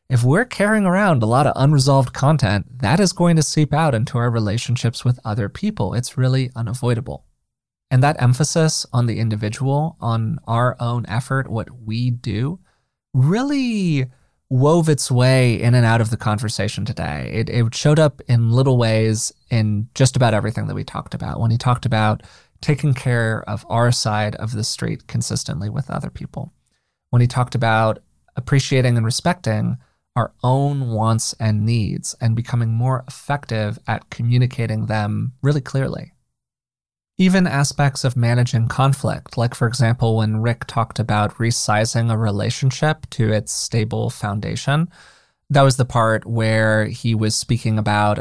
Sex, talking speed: male, 160 wpm